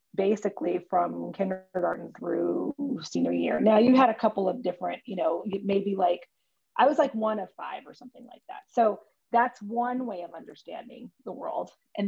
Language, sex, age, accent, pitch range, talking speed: English, female, 30-49, American, 185-240 Hz, 180 wpm